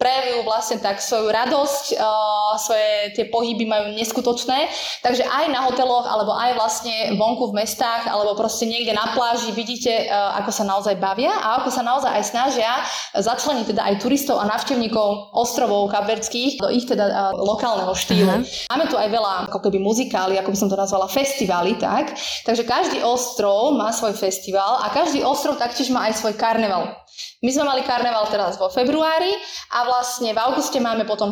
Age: 20-39